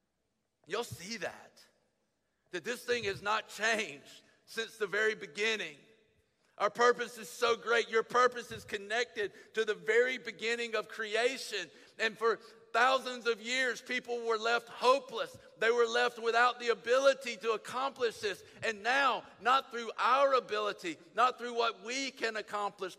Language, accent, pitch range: English, American, 160-240 Hz